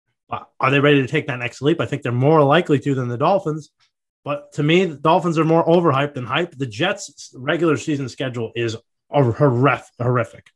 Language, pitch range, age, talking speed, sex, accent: English, 135-180 Hz, 30-49, 195 wpm, male, American